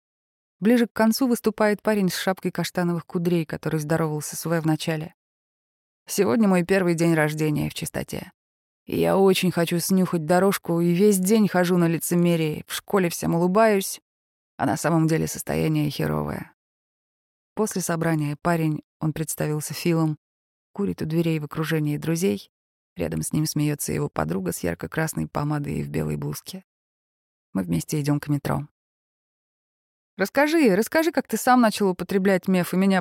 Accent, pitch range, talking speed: native, 150-185 Hz, 150 wpm